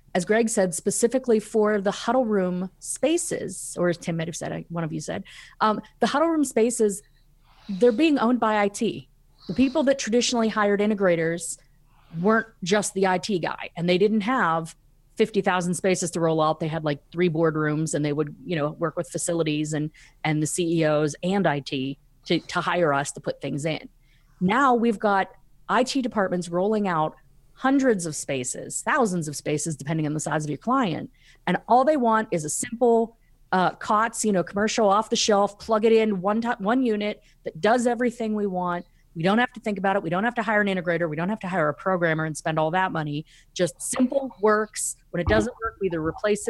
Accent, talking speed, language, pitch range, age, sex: American, 205 wpm, English, 155-220 Hz, 30-49, female